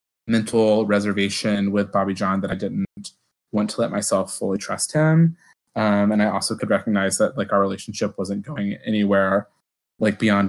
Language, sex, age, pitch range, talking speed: English, male, 20-39, 100-115 Hz, 170 wpm